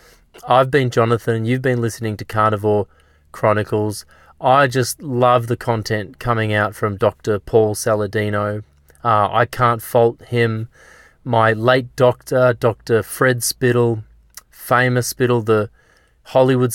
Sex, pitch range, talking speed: male, 110-130 Hz, 125 wpm